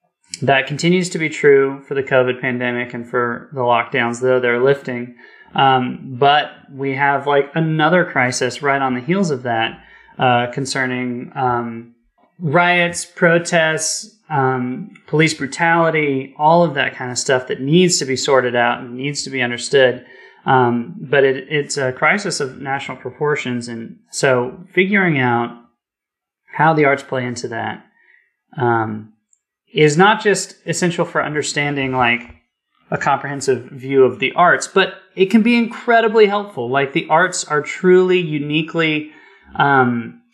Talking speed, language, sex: 150 wpm, English, male